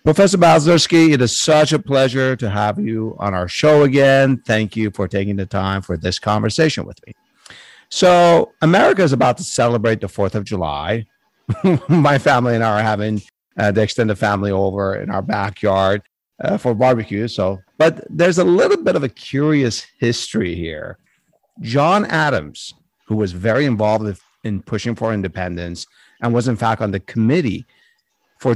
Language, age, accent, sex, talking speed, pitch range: English, 50-69, American, male, 170 wpm, 100-135 Hz